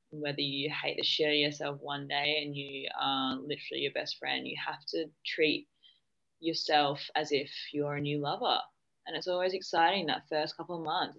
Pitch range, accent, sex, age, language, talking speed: 145-165 Hz, Australian, female, 10-29, English, 190 wpm